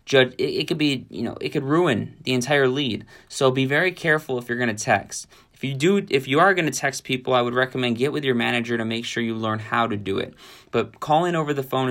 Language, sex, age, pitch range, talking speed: English, male, 20-39, 120-150 Hz, 245 wpm